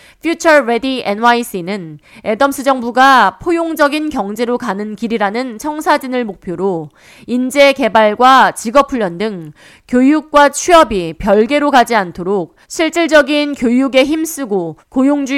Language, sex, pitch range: Korean, female, 200-290 Hz